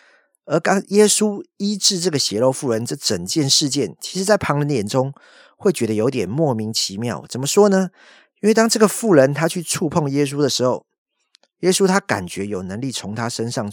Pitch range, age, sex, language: 115-180 Hz, 50-69, male, Chinese